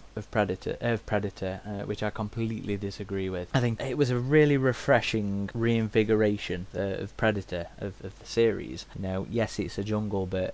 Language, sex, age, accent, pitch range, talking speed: English, male, 20-39, British, 100-120 Hz, 180 wpm